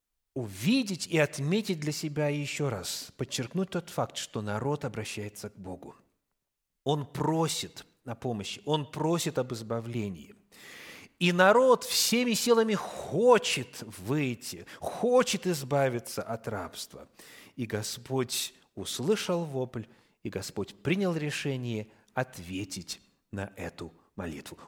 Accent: native